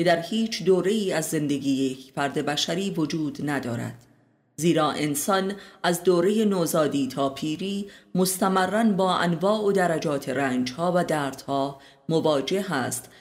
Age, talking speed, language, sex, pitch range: 30-49, 130 wpm, Persian, female, 145-190 Hz